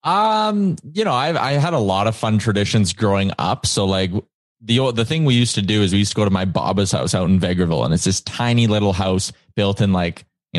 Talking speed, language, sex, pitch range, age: 250 wpm, English, male, 100-115 Hz, 20-39